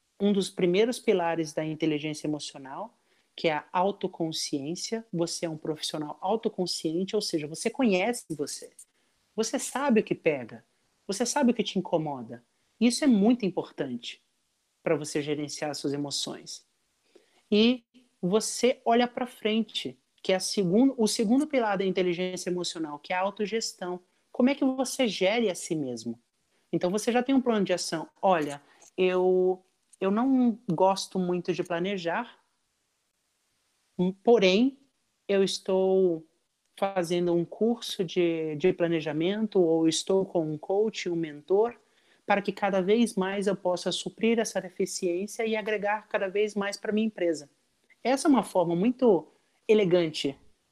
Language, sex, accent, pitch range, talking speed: Portuguese, male, Brazilian, 170-220 Hz, 145 wpm